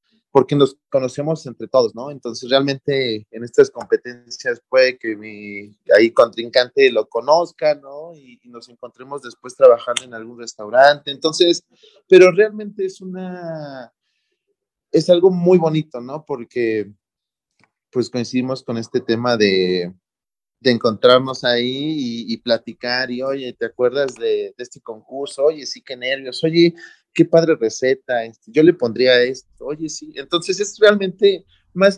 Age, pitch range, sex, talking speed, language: 30-49, 120-160 Hz, male, 145 wpm, Spanish